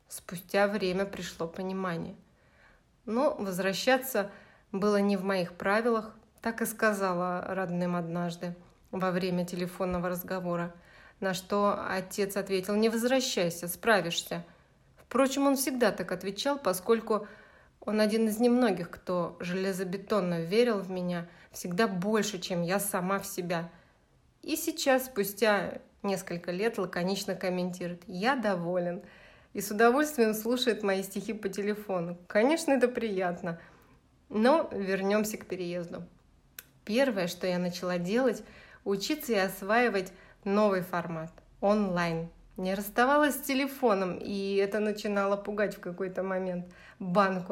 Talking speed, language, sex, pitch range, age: 120 wpm, Russian, female, 185-220 Hz, 30-49